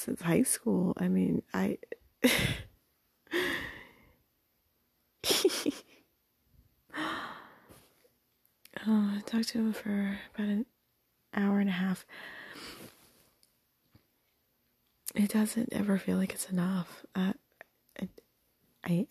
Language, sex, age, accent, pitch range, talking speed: English, female, 30-49, American, 185-230 Hz, 85 wpm